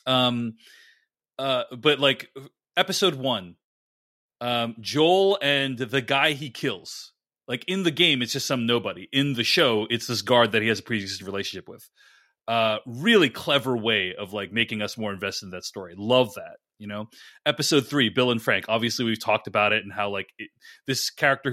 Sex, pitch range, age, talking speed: male, 105-135 Hz, 30-49, 185 wpm